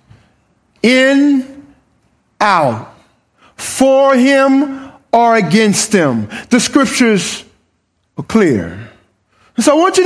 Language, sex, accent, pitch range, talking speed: English, male, American, 195-260 Hz, 90 wpm